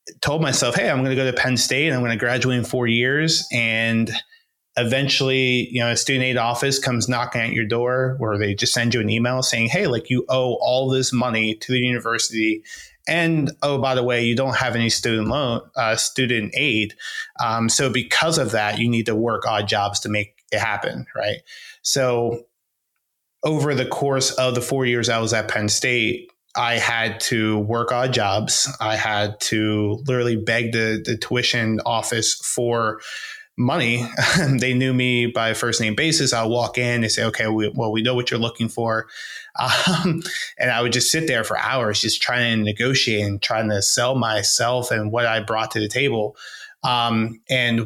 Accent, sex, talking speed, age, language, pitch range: American, male, 195 wpm, 20-39, English, 110-130 Hz